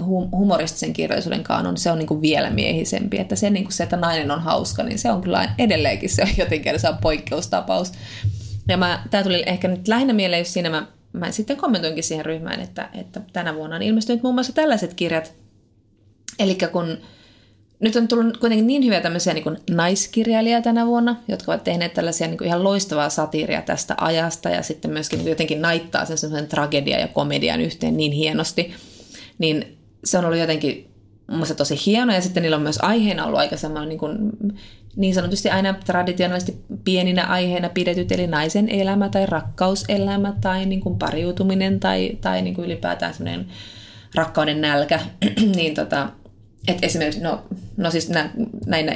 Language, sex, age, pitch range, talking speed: Finnish, female, 20-39, 145-195 Hz, 170 wpm